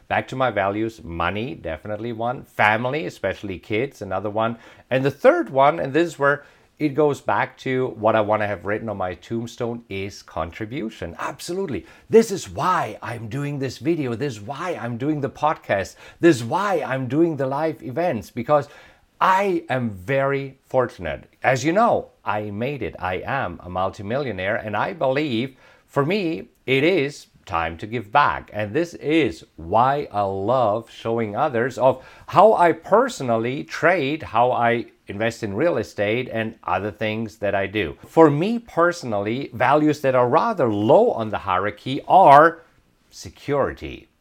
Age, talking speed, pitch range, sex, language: 50-69, 165 wpm, 105-150 Hz, male, English